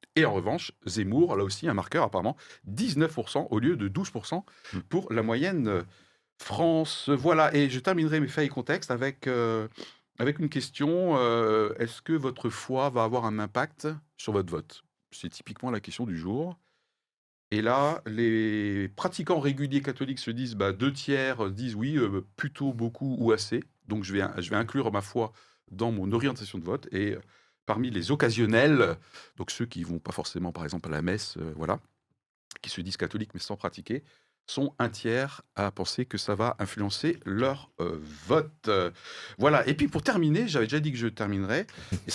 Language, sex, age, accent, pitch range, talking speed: French, male, 40-59, French, 105-145 Hz, 185 wpm